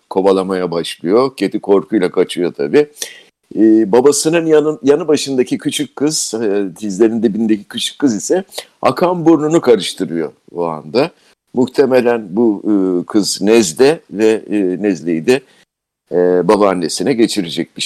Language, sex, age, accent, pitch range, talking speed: Turkish, male, 60-79, native, 100-140 Hz, 125 wpm